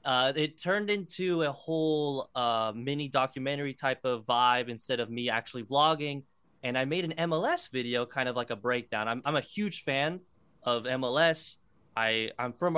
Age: 20-39